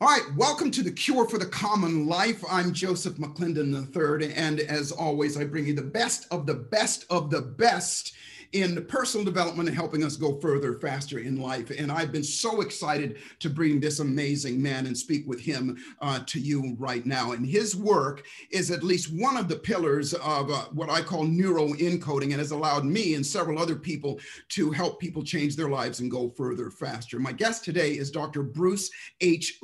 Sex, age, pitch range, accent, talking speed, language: male, 40-59, 145-180 Hz, American, 200 wpm, English